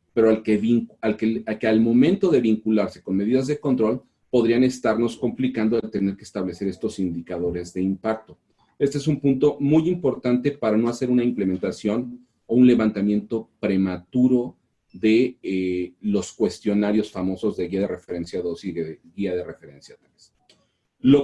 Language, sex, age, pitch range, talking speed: Spanish, male, 40-59, 100-125 Hz, 165 wpm